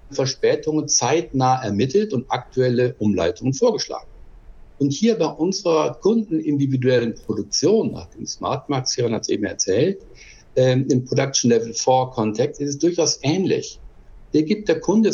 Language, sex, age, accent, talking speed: German, male, 60-79, German, 145 wpm